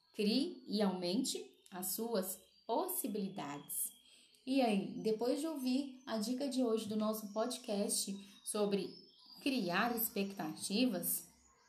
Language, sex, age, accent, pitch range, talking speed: Portuguese, female, 10-29, Brazilian, 190-245 Hz, 110 wpm